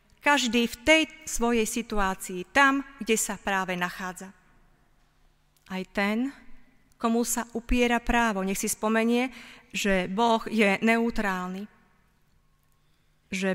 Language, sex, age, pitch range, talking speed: Slovak, female, 30-49, 195-235 Hz, 105 wpm